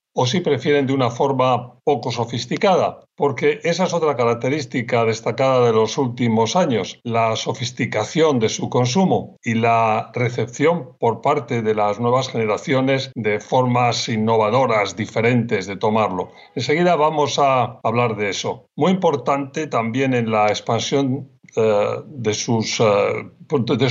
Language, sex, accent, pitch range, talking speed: Spanish, male, Spanish, 115-140 Hz, 135 wpm